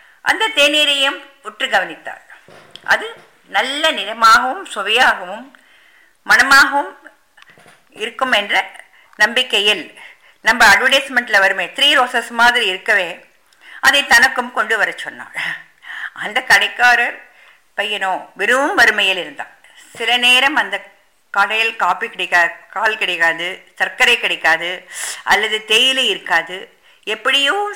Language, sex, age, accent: English, female, 50-69, Indian